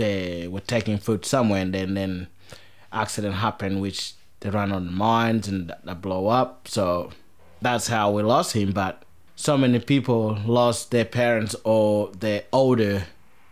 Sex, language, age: male, English, 30-49